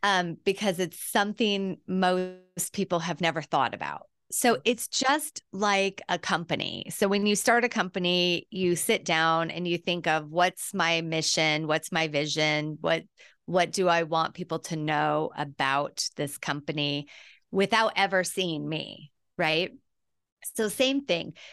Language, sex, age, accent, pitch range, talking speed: English, female, 30-49, American, 155-195 Hz, 150 wpm